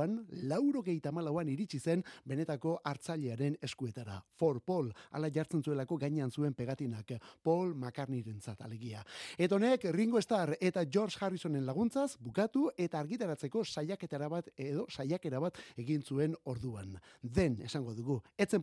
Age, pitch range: 30-49, 130-190 Hz